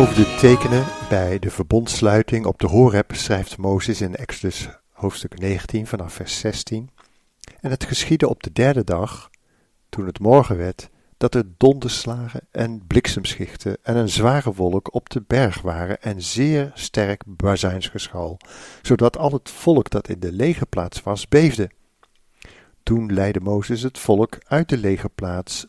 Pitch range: 95-125 Hz